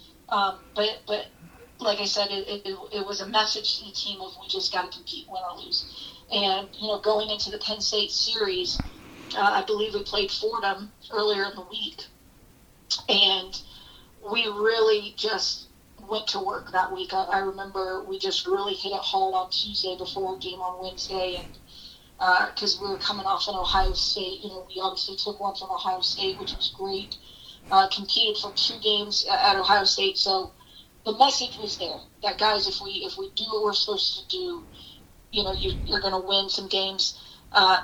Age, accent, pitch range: 40-59, American, 190-215 Hz